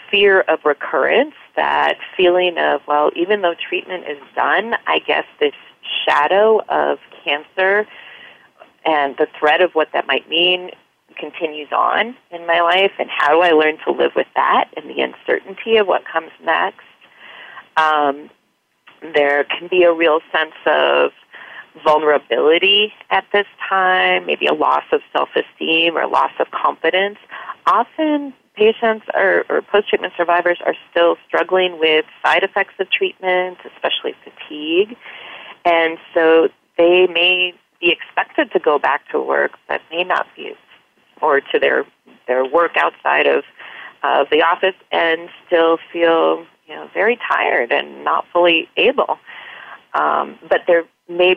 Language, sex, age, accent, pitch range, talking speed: English, female, 30-49, American, 160-225 Hz, 145 wpm